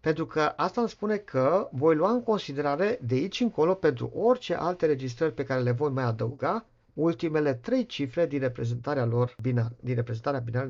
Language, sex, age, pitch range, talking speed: Romanian, male, 50-69, 125-210 Hz, 185 wpm